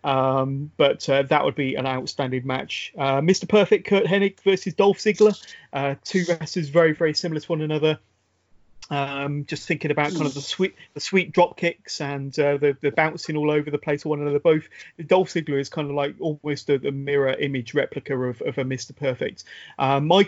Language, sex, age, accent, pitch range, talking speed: English, male, 30-49, British, 135-165 Hz, 205 wpm